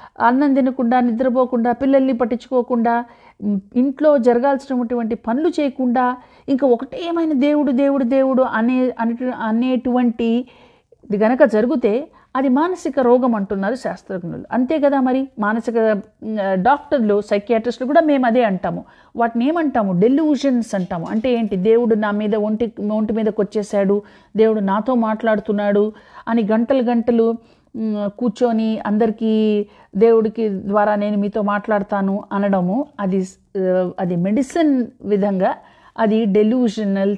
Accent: native